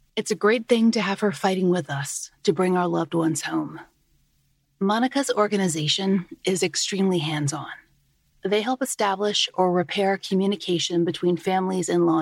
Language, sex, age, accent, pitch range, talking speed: English, female, 30-49, American, 160-205 Hz, 150 wpm